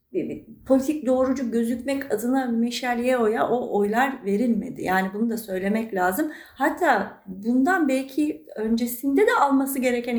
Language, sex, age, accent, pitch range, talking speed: Turkish, female, 40-59, native, 210-260 Hz, 120 wpm